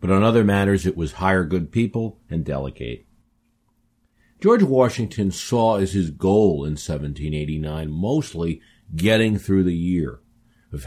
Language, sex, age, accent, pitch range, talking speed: English, male, 50-69, American, 85-115 Hz, 140 wpm